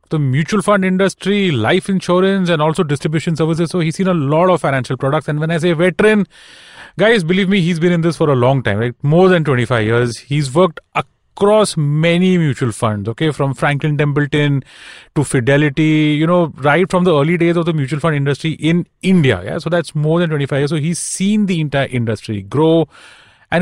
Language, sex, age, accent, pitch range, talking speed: English, male, 30-49, Indian, 145-190 Hz, 205 wpm